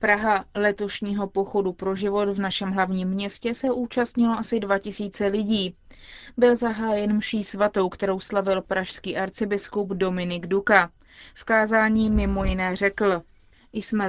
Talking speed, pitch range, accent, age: 130 wpm, 195-225 Hz, native, 20-39